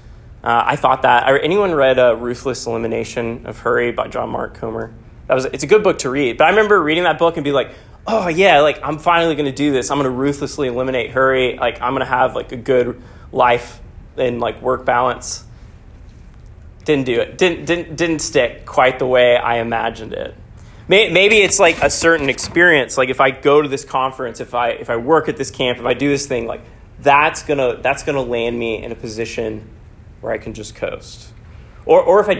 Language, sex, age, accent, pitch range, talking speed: English, male, 20-39, American, 115-145 Hz, 220 wpm